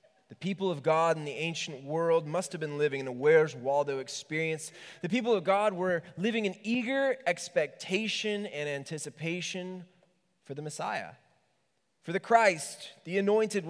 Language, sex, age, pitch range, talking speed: English, male, 20-39, 150-210 Hz, 160 wpm